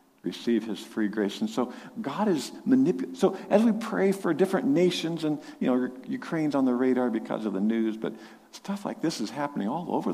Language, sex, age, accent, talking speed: English, male, 50-69, American, 205 wpm